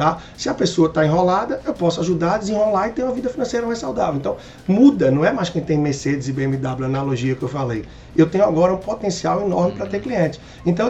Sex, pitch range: male, 140-185 Hz